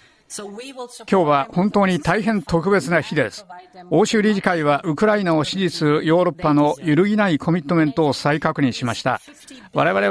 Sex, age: male, 50-69